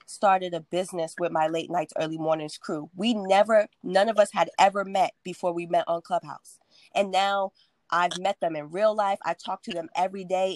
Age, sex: 20-39, female